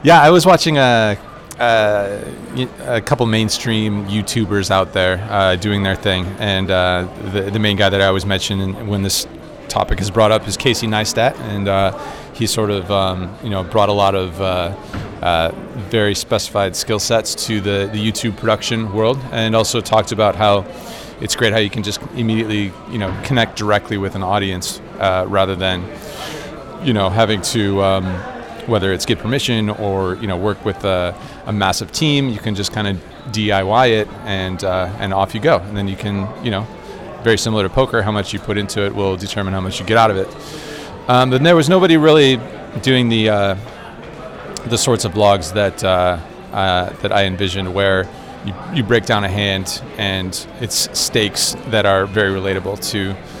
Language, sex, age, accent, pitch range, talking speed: Danish, male, 30-49, American, 95-115 Hz, 190 wpm